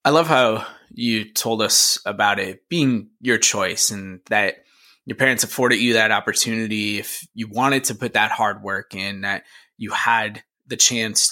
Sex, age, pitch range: male, 20-39, 105-125 Hz